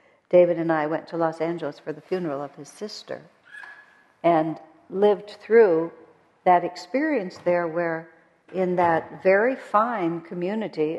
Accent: American